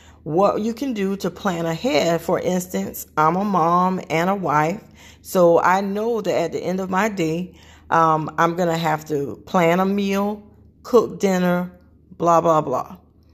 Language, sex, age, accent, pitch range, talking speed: English, female, 40-59, American, 165-225 Hz, 175 wpm